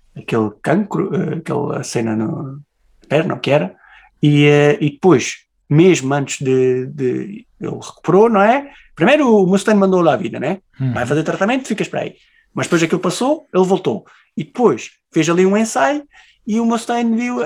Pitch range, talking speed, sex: 125-175 Hz, 170 wpm, male